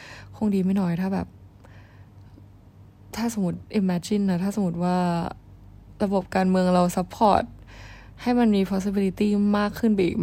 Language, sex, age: Thai, female, 20-39